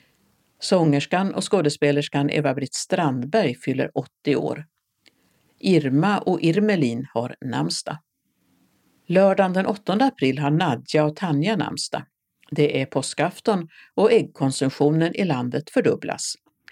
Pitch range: 140-165 Hz